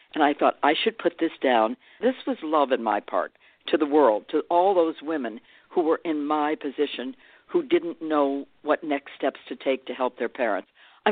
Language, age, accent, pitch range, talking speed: English, 60-79, American, 145-195 Hz, 210 wpm